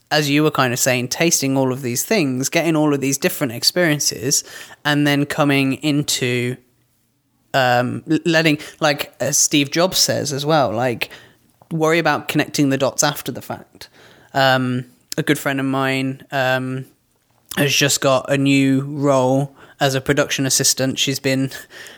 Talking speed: 160 wpm